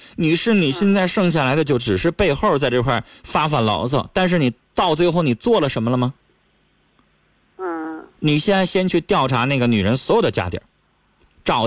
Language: Chinese